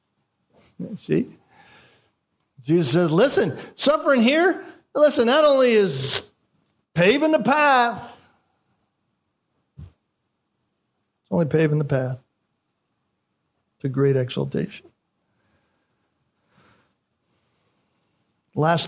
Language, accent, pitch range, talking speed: English, American, 135-170 Hz, 70 wpm